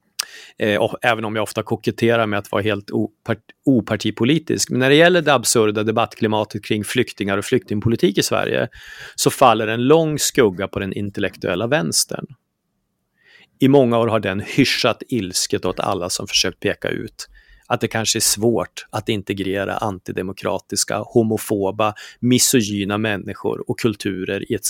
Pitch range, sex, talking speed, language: 105-125 Hz, male, 145 wpm, Swedish